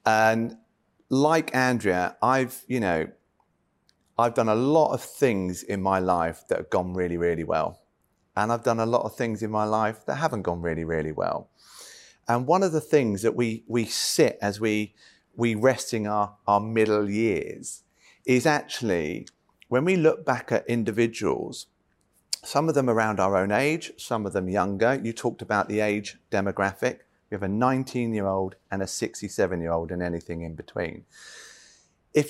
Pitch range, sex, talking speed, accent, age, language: 100-125 Hz, male, 170 wpm, British, 30-49, English